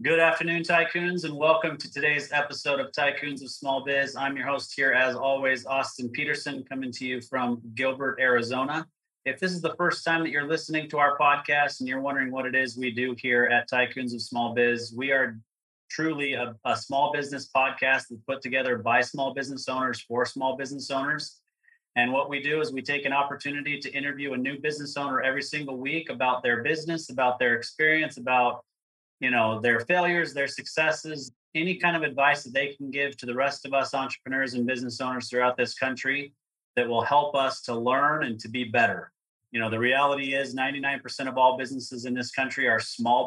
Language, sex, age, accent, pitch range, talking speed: English, male, 30-49, American, 125-145 Hz, 205 wpm